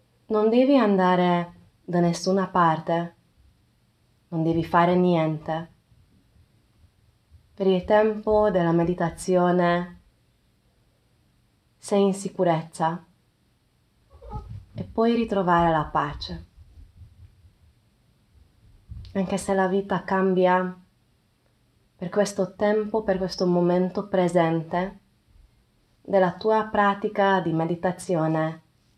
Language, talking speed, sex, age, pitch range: Italian, 85 wpm, female, 20-39, 120-185 Hz